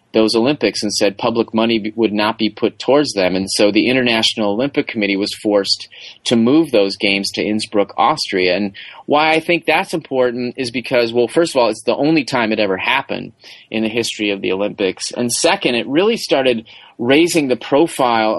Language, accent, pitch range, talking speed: English, American, 110-130 Hz, 195 wpm